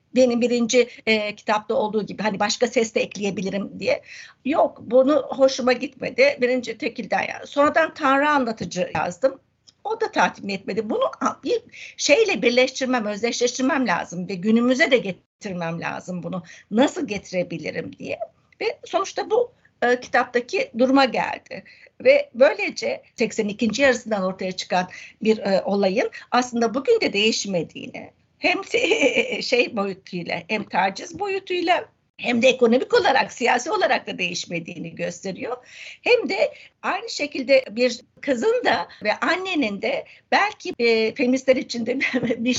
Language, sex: Turkish, female